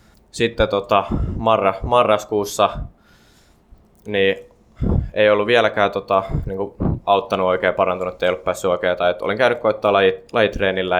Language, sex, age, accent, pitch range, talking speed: Finnish, male, 20-39, native, 95-105 Hz, 125 wpm